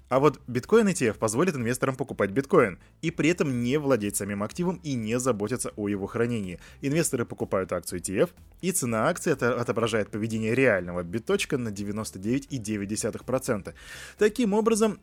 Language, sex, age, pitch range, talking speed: Russian, male, 20-39, 105-150 Hz, 150 wpm